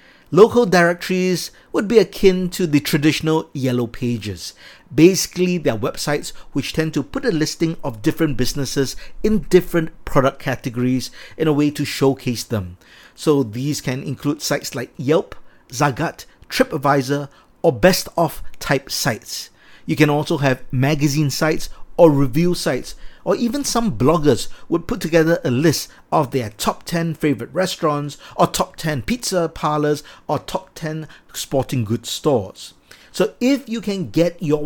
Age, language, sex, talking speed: 50-69, English, male, 150 wpm